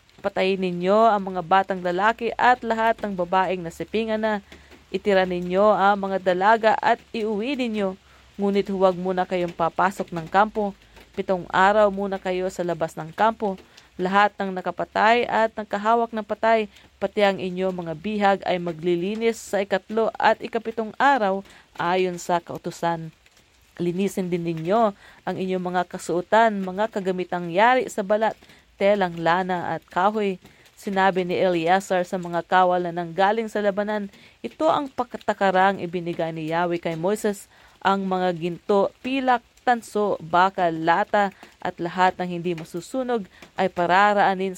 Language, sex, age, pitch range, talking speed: English, female, 40-59, 180-215 Hz, 140 wpm